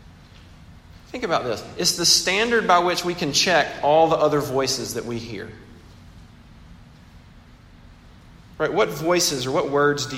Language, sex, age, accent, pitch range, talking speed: English, male, 40-59, American, 115-170 Hz, 145 wpm